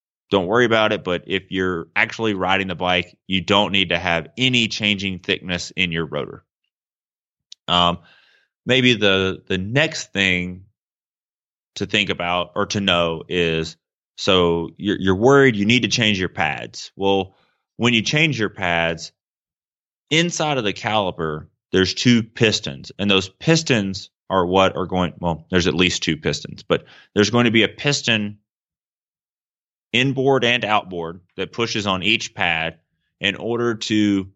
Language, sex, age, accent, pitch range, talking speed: English, male, 30-49, American, 90-110 Hz, 155 wpm